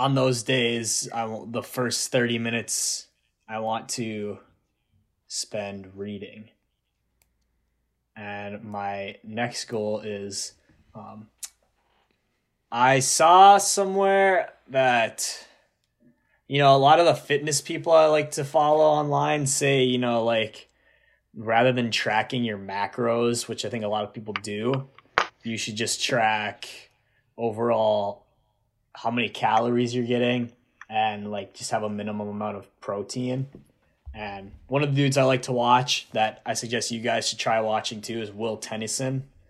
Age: 20-39